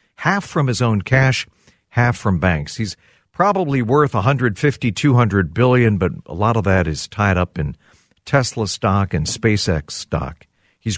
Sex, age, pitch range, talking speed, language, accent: male, 50-69, 95-150 Hz, 160 wpm, English, American